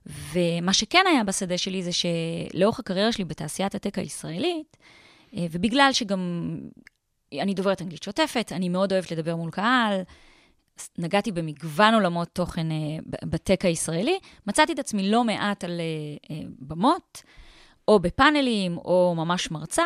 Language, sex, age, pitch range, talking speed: Hebrew, female, 20-39, 170-220 Hz, 125 wpm